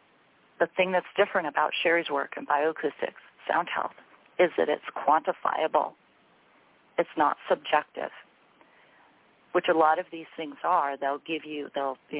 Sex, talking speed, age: female, 145 wpm, 40-59